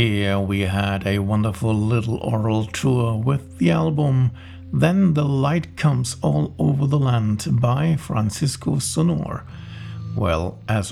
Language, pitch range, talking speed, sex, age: English, 110-165 Hz, 130 wpm, male, 50-69